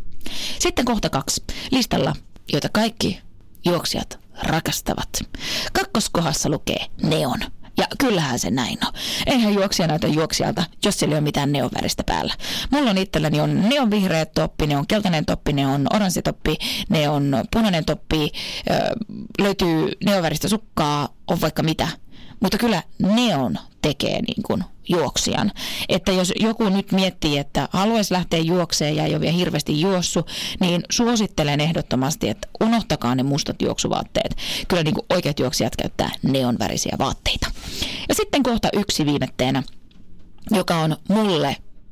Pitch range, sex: 150-210 Hz, female